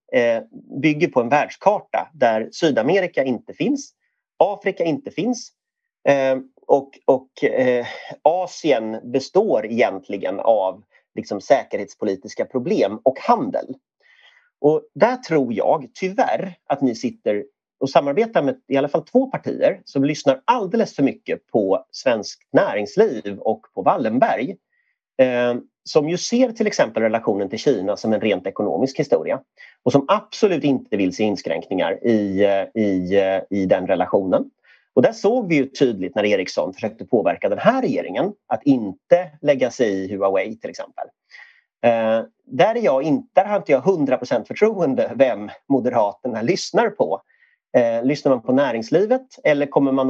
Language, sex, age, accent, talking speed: Swedish, male, 30-49, native, 145 wpm